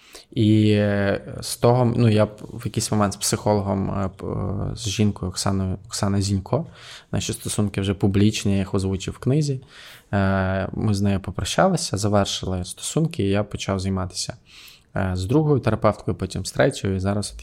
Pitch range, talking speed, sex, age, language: 100-115 Hz, 150 wpm, male, 20-39, Ukrainian